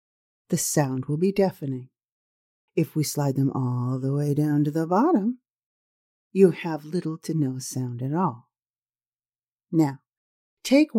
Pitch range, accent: 135-195 Hz, American